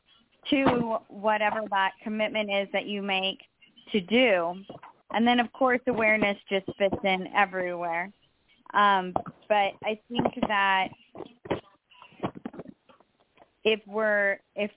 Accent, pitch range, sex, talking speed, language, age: American, 190-220 Hz, female, 100 wpm, English, 20-39